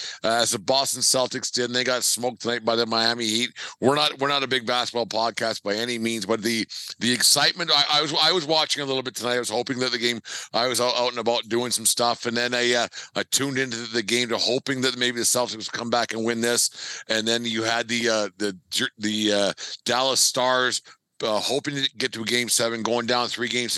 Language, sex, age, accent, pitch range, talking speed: English, male, 50-69, American, 115-125 Hz, 250 wpm